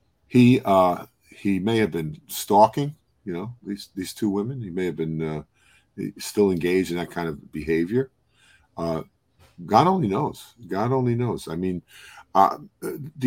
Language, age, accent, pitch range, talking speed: English, 50-69, American, 80-105 Hz, 160 wpm